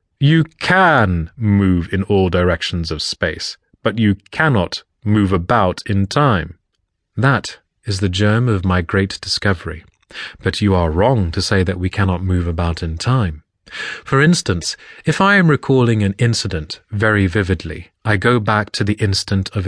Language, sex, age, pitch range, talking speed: English, male, 30-49, 95-120 Hz, 160 wpm